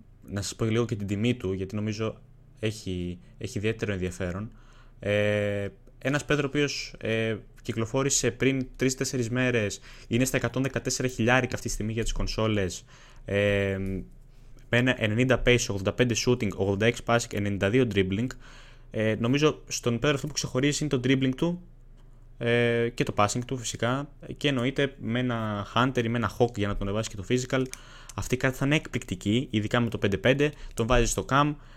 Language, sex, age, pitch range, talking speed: Greek, male, 20-39, 110-130 Hz, 175 wpm